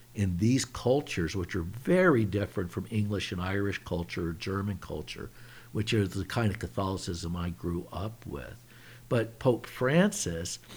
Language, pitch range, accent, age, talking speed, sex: English, 95-125 Hz, American, 60-79, 150 wpm, male